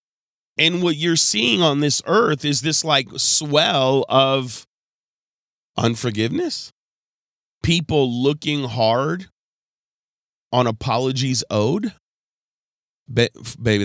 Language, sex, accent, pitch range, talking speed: English, male, American, 105-125 Hz, 85 wpm